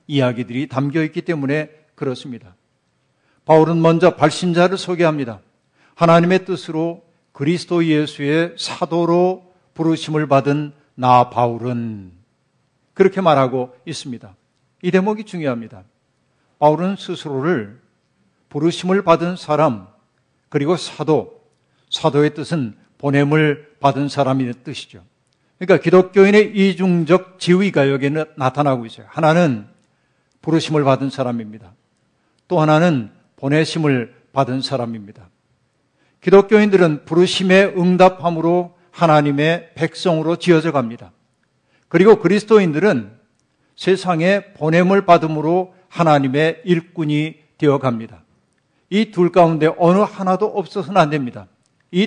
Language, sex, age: Korean, male, 50-69